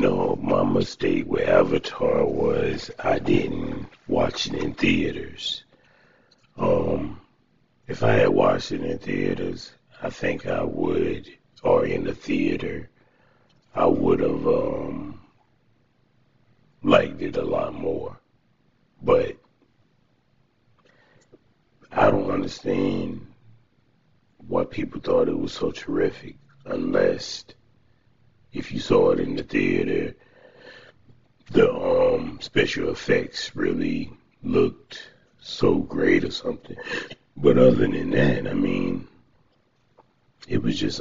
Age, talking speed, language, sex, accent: 60-79, 110 wpm, English, male, American